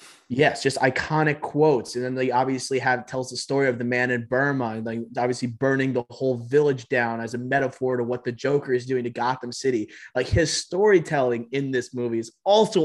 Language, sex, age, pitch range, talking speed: English, male, 20-39, 125-145 Hz, 205 wpm